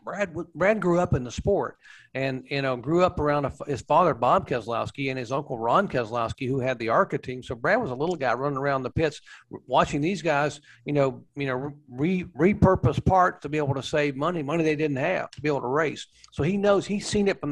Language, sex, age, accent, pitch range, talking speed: English, male, 50-69, American, 135-165 Hz, 245 wpm